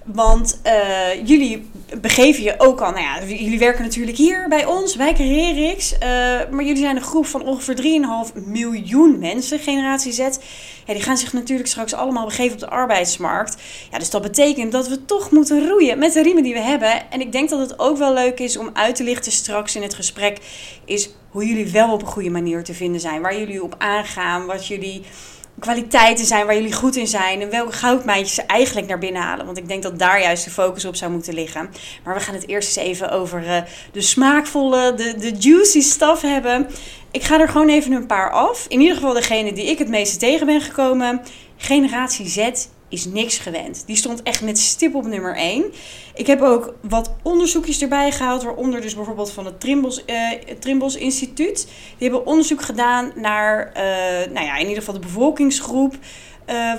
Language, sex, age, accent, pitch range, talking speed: Dutch, female, 20-39, Dutch, 205-275 Hz, 205 wpm